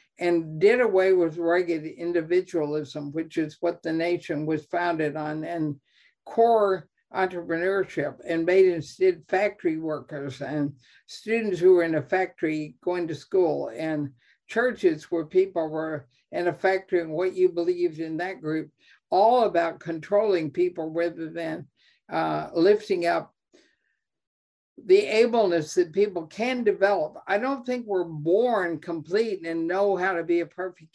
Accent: American